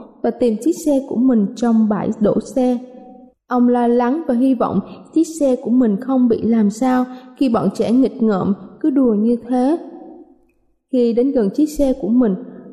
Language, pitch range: Vietnamese, 235-290 Hz